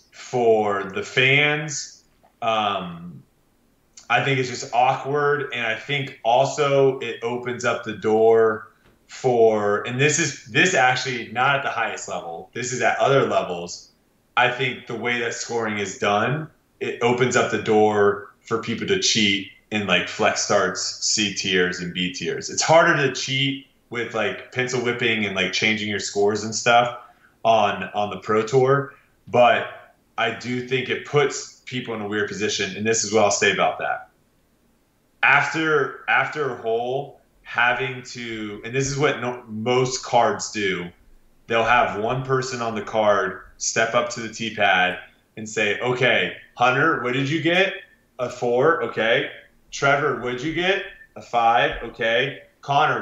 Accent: American